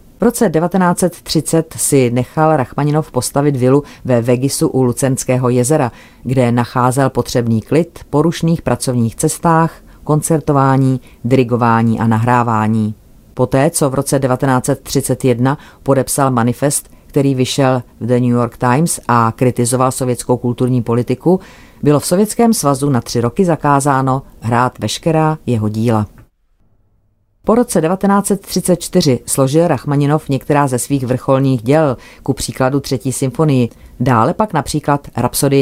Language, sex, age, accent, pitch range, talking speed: Czech, female, 40-59, native, 120-150 Hz, 125 wpm